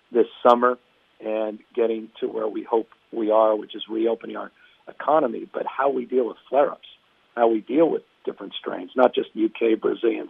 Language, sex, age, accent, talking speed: English, male, 50-69, American, 175 wpm